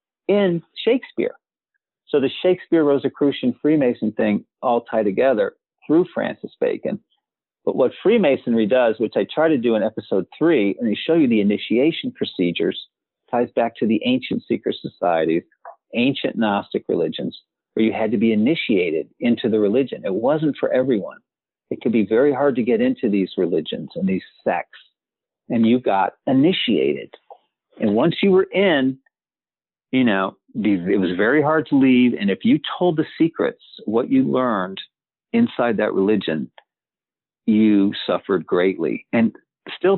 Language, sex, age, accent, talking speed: English, male, 50-69, American, 155 wpm